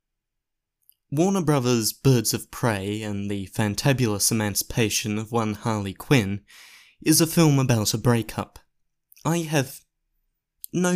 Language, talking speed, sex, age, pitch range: English, 120 wpm, male, 20-39, 110-155 Hz